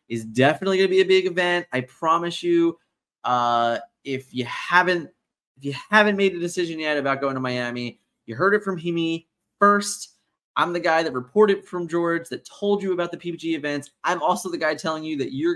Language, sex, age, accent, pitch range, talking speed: English, male, 20-39, American, 125-165 Hz, 210 wpm